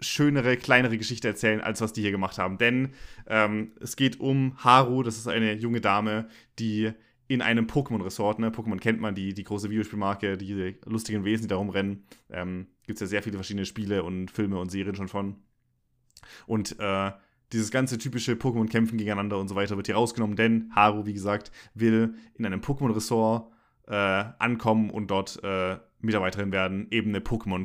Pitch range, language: 100-115 Hz, German